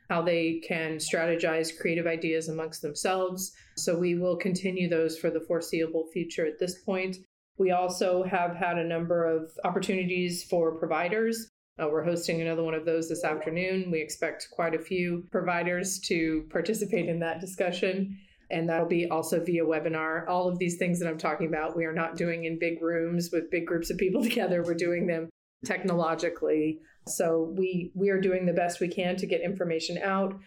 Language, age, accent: English, 30-49, American